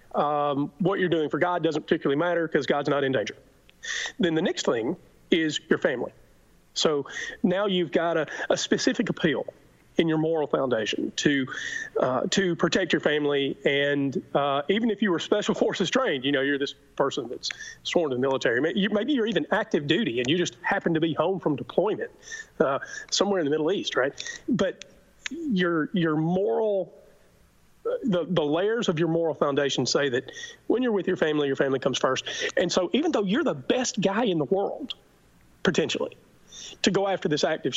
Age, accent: 40-59, American